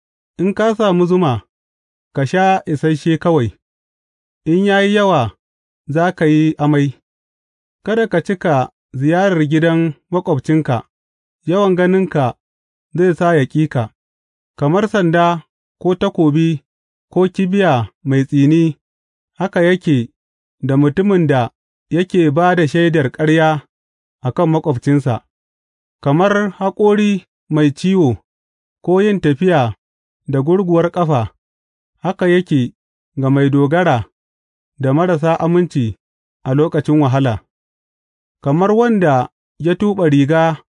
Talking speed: 75 wpm